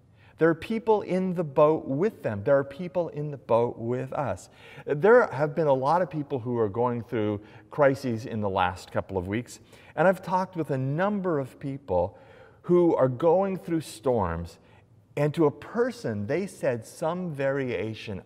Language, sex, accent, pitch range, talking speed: English, male, American, 105-155 Hz, 180 wpm